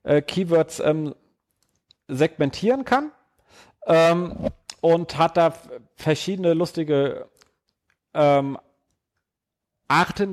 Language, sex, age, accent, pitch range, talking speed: German, male, 40-59, German, 135-165 Hz, 75 wpm